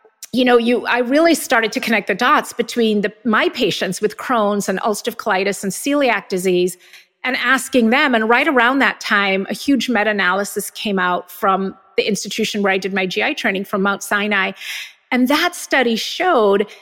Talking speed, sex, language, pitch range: 180 wpm, female, English, 200-250 Hz